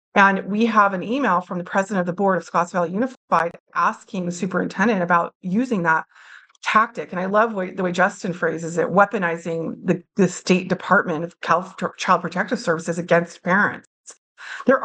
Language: English